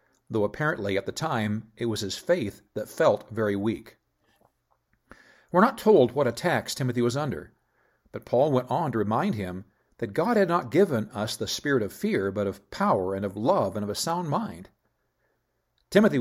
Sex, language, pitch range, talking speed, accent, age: male, English, 105-160 Hz, 185 wpm, American, 50-69